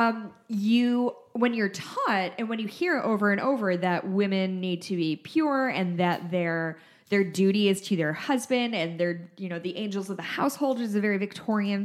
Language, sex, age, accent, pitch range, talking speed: English, female, 10-29, American, 180-230 Hz, 205 wpm